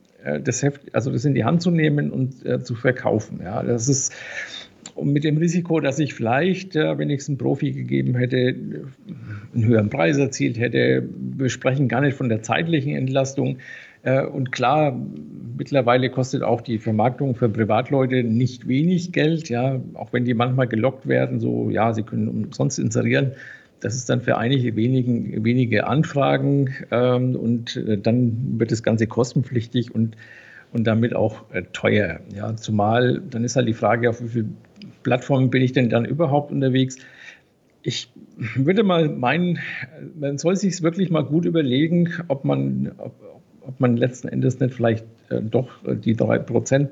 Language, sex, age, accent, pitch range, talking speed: German, male, 50-69, German, 115-140 Hz, 155 wpm